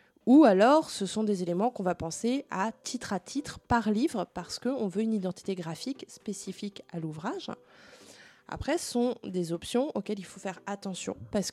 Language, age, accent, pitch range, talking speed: French, 20-39, French, 180-230 Hz, 180 wpm